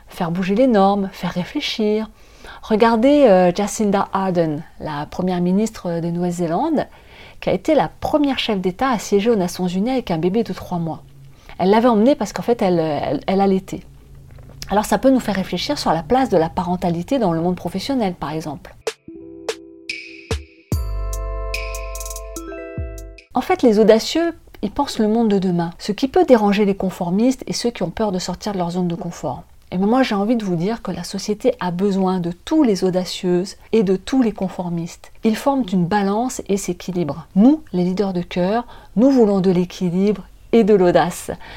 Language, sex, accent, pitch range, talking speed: French, female, French, 170-225 Hz, 185 wpm